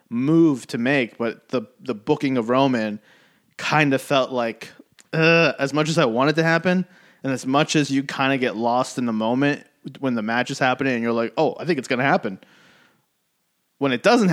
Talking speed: 205 wpm